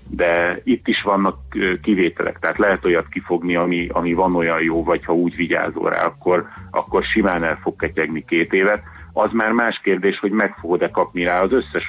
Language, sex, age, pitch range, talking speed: Hungarian, male, 30-49, 80-95 Hz, 190 wpm